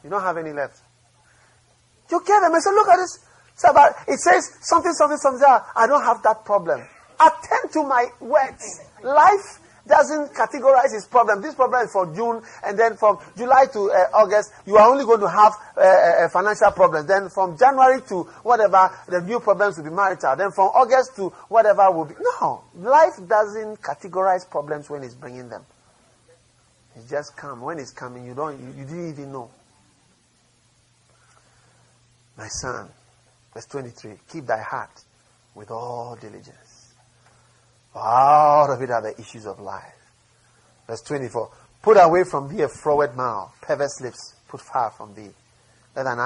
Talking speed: 175 wpm